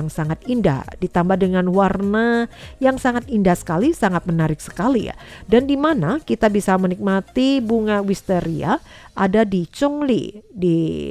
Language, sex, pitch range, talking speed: Indonesian, female, 165-220 Hz, 140 wpm